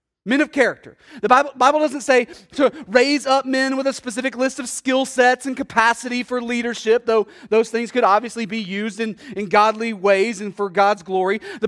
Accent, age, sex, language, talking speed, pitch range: American, 30-49, male, English, 200 wpm, 215-265 Hz